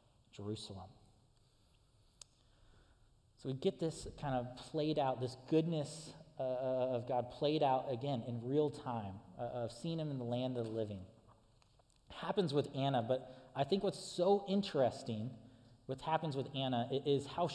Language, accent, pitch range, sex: English, American, 120-160 Hz, male